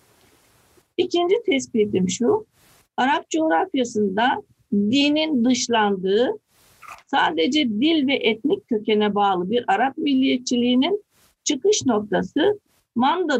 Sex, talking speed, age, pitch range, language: female, 85 wpm, 50-69, 220-290 Hz, Turkish